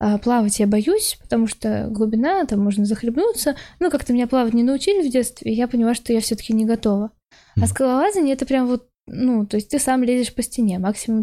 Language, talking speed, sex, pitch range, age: Russian, 220 wpm, female, 220-255 Hz, 10-29